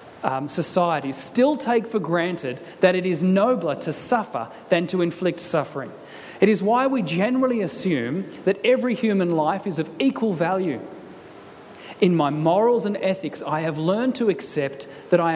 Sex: male